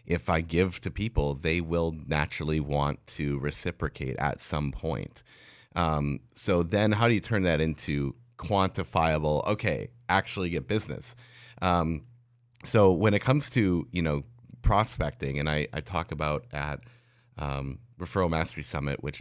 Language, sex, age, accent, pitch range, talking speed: English, male, 30-49, American, 75-105 Hz, 150 wpm